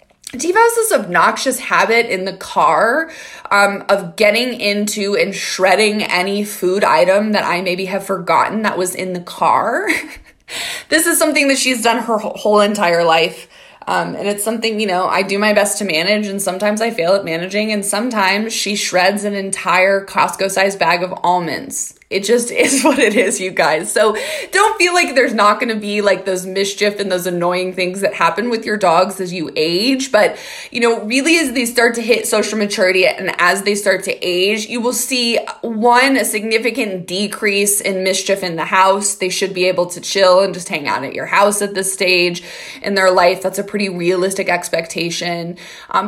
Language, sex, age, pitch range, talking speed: English, female, 20-39, 185-235 Hz, 195 wpm